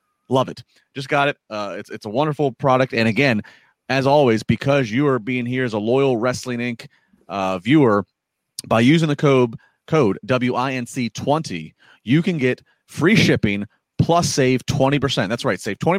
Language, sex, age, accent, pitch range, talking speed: English, male, 30-49, American, 125-160 Hz, 165 wpm